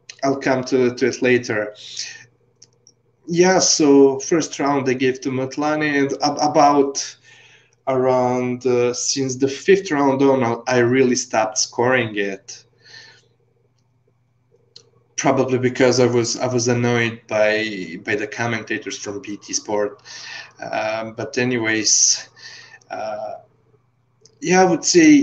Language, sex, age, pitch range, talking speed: English, male, 20-39, 115-135 Hz, 120 wpm